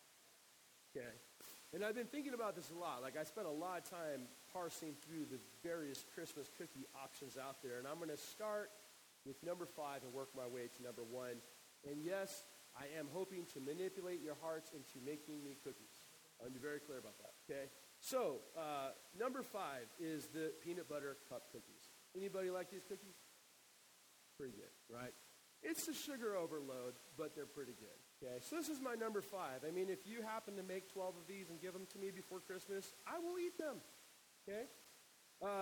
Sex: male